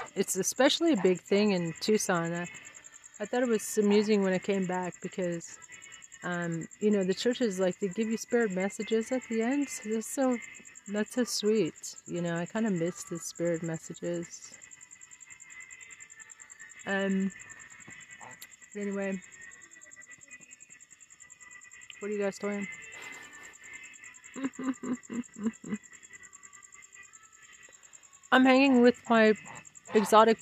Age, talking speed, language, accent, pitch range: 40-59, 115 wpm, English, American, 185-240 Hz